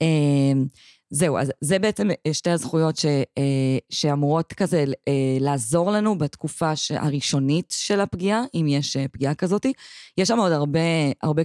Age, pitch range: 20-39, 140-170 Hz